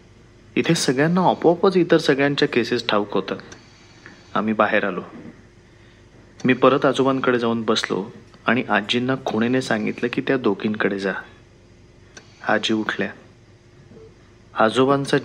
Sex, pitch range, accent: male, 110-130 Hz, native